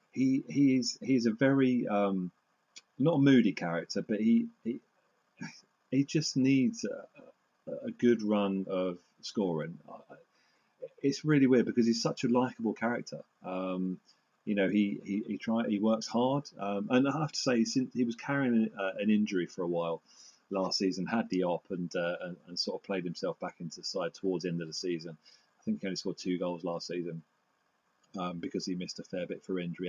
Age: 30-49